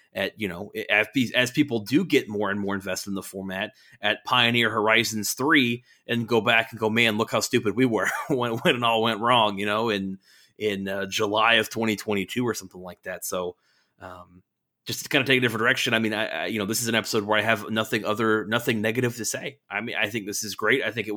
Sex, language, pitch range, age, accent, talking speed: male, English, 105-120 Hz, 30-49, American, 250 wpm